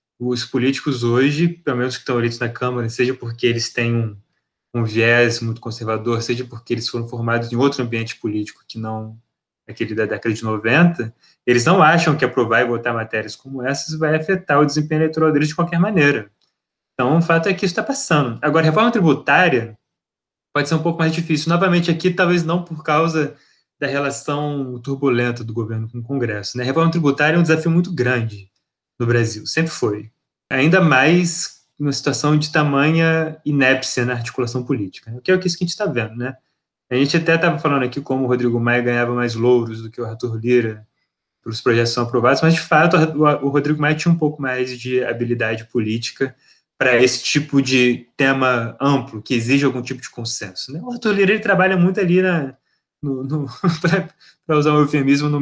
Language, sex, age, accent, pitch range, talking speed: Portuguese, male, 20-39, Brazilian, 120-155 Hz, 195 wpm